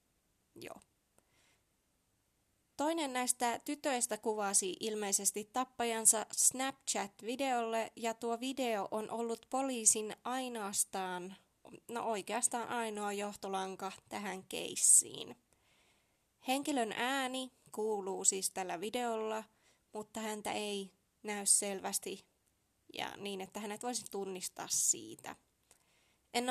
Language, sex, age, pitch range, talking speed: Finnish, female, 20-39, 205-245 Hz, 90 wpm